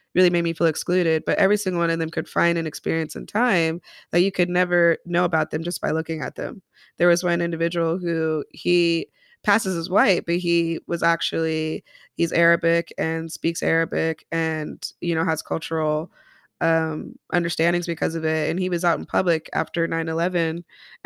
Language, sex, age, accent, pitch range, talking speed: English, female, 20-39, American, 160-175 Hz, 185 wpm